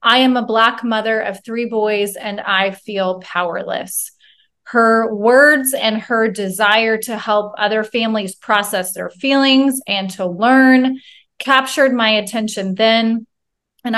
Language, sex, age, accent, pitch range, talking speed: English, female, 30-49, American, 210-265 Hz, 135 wpm